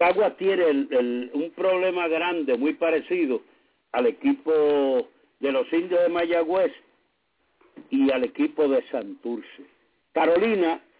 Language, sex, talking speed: English, male, 120 wpm